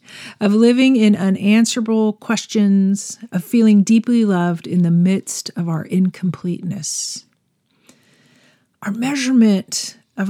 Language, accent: English, American